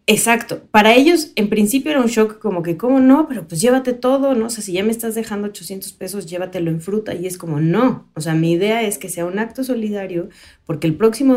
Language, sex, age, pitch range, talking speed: Spanish, female, 30-49, 170-225 Hz, 245 wpm